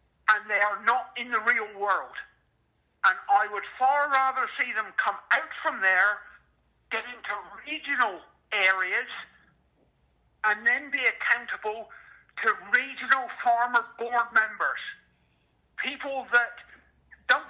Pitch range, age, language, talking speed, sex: 200-255 Hz, 50-69, English, 120 wpm, male